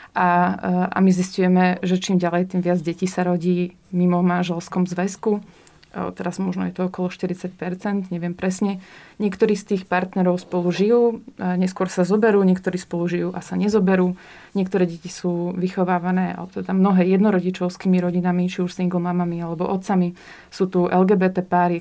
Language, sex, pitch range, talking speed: Slovak, female, 175-190 Hz, 160 wpm